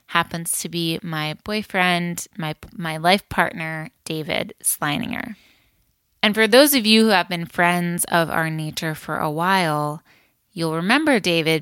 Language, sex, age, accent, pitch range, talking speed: English, female, 20-39, American, 160-195 Hz, 150 wpm